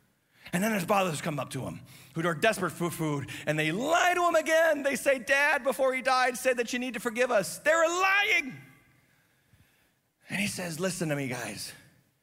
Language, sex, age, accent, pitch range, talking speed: English, male, 30-49, American, 130-185 Hz, 200 wpm